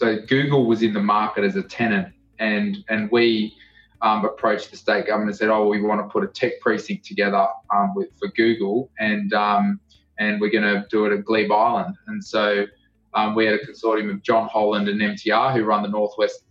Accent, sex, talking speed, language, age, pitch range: Australian, male, 215 wpm, English, 20-39, 105-115 Hz